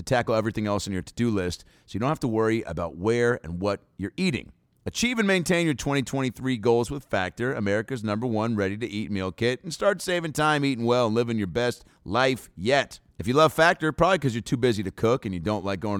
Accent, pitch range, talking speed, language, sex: American, 100-135 Hz, 235 wpm, English, male